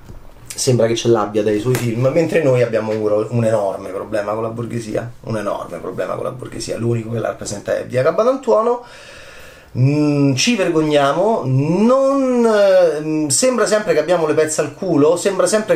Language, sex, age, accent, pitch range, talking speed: Italian, male, 30-49, native, 125-185 Hz, 165 wpm